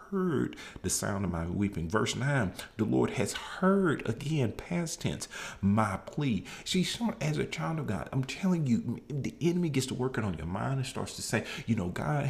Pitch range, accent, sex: 100-145 Hz, American, male